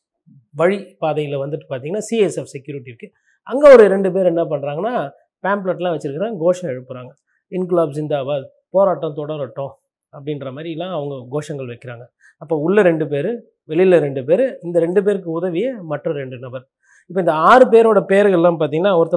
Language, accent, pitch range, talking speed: Tamil, native, 150-185 Hz, 145 wpm